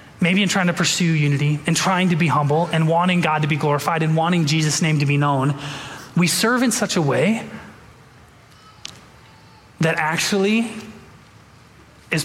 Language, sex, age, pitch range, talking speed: English, male, 20-39, 135-165 Hz, 160 wpm